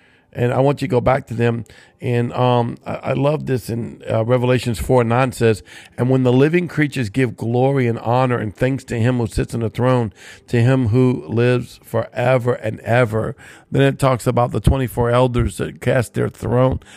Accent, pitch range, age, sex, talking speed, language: American, 120-150 Hz, 50-69, male, 205 wpm, English